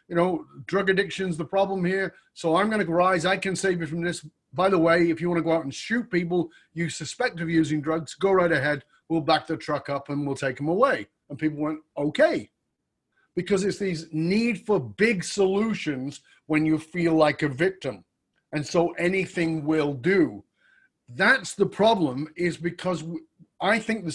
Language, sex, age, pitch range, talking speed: English, male, 30-49, 155-190 Hz, 195 wpm